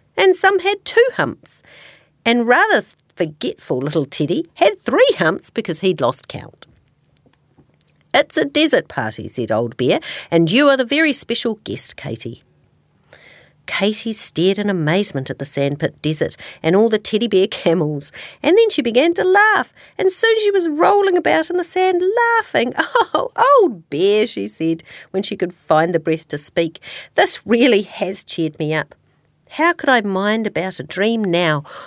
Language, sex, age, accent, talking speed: English, female, 50-69, Australian, 170 wpm